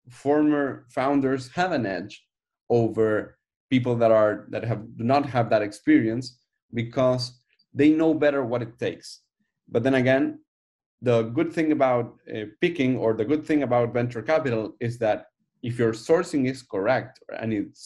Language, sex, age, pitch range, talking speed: English, male, 30-49, 115-145 Hz, 160 wpm